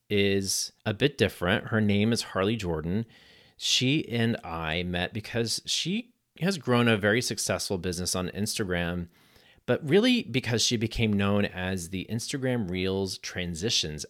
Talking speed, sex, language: 145 wpm, male, English